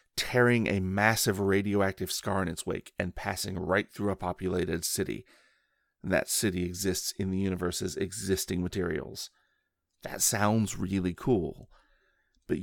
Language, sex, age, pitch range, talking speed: English, male, 40-59, 90-110 Hz, 135 wpm